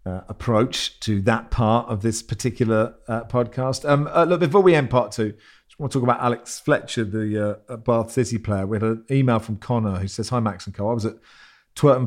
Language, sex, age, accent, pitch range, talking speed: English, male, 40-59, British, 110-125 Hz, 235 wpm